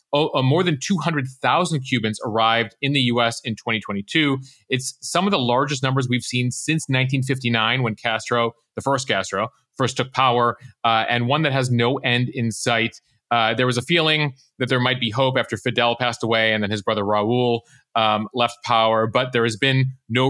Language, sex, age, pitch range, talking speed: English, male, 30-49, 115-140 Hz, 190 wpm